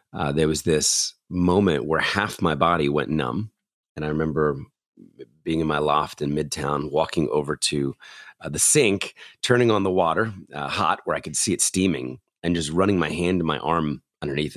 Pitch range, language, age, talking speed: 75-115 Hz, English, 30-49, 195 wpm